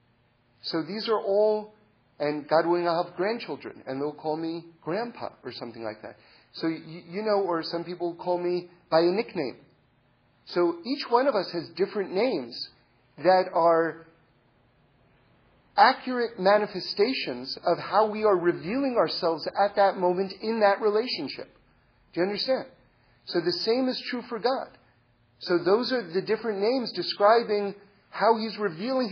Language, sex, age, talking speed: English, male, 40-59, 155 wpm